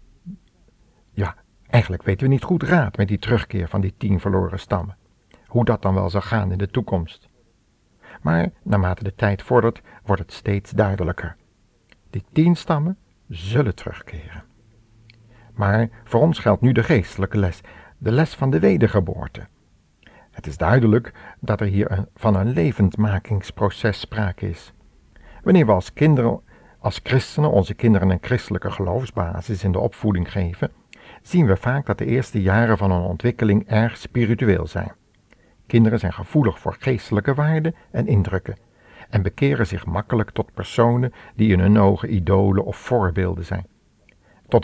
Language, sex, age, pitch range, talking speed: Dutch, male, 60-79, 95-120 Hz, 150 wpm